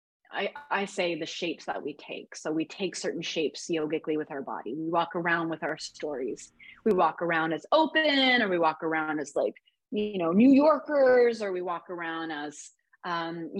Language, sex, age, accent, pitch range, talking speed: English, female, 30-49, American, 165-240 Hz, 195 wpm